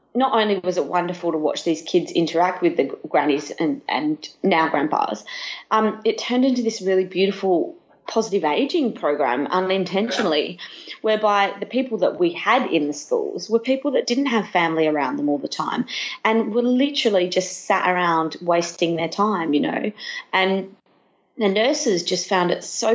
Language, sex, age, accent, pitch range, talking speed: English, female, 30-49, Australian, 170-225 Hz, 175 wpm